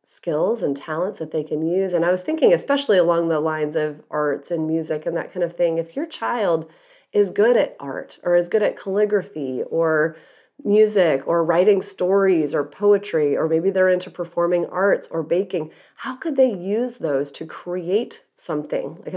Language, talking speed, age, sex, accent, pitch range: English, 190 wpm, 30-49, female, American, 160-195 Hz